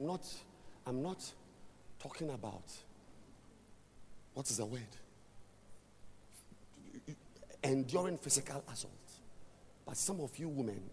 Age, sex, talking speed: 50-69, male, 90 wpm